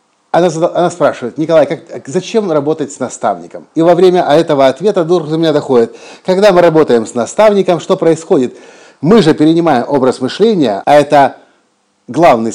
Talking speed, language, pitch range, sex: 150 wpm, Russian, 135-180 Hz, male